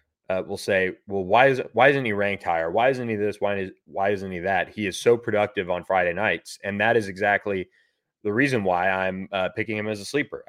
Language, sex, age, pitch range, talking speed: English, male, 20-39, 95-110 Hz, 240 wpm